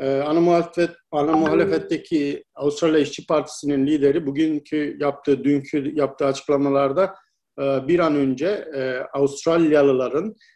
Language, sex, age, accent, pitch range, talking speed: Turkish, male, 50-69, native, 135-155 Hz, 100 wpm